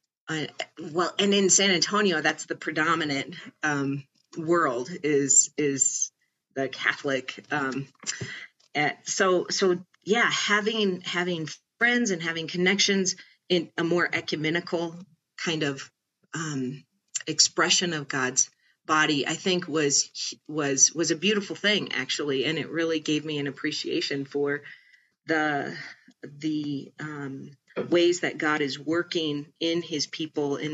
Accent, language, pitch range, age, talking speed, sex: American, English, 145-180 Hz, 40-59, 125 wpm, female